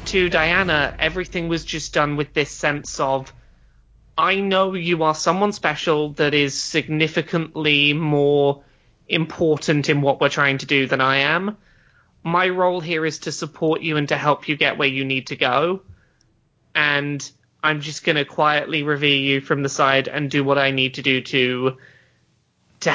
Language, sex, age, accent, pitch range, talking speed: English, male, 20-39, British, 140-180 Hz, 175 wpm